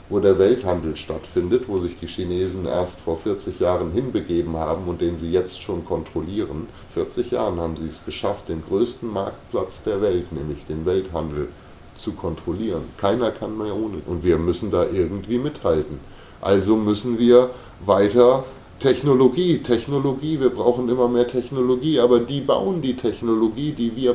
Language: German